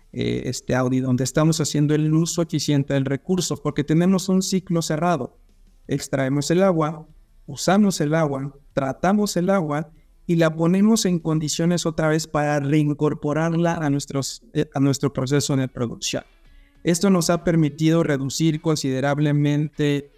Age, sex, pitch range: 50-69, male, 135-160 Hz